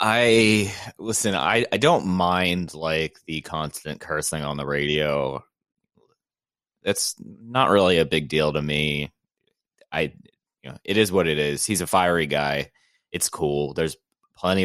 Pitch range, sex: 75-100 Hz, male